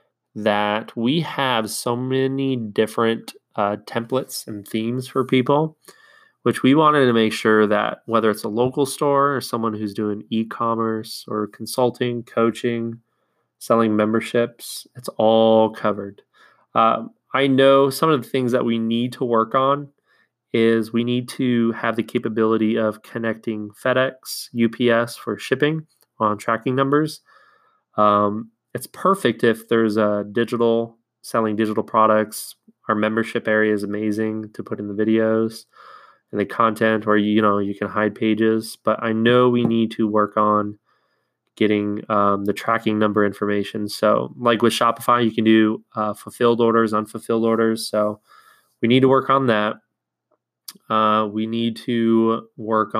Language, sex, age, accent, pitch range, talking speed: English, male, 20-39, American, 105-120 Hz, 150 wpm